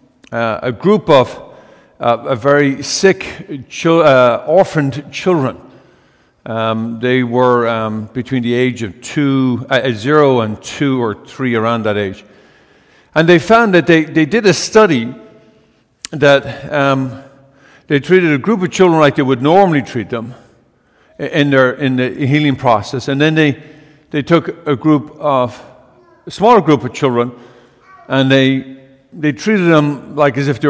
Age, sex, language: 50-69, male, English